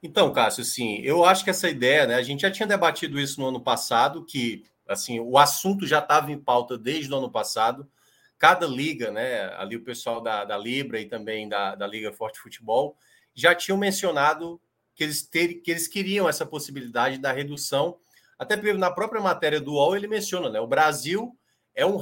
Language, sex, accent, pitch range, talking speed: Portuguese, male, Brazilian, 140-195 Hz, 195 wpm